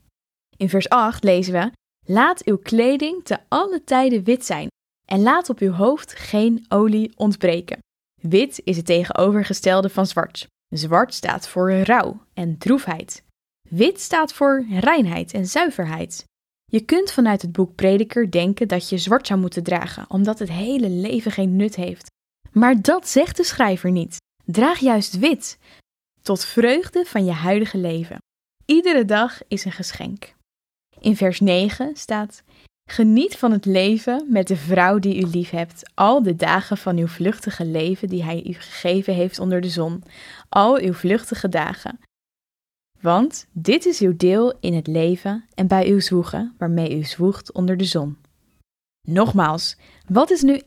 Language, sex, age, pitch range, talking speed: Dutch, female, 10-29, 180-245 Hz, 160 wpm